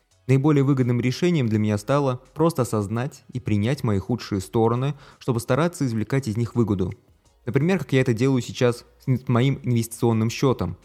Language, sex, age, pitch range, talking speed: Russian, male, 20-39, 105-130 Hz, 160 wpm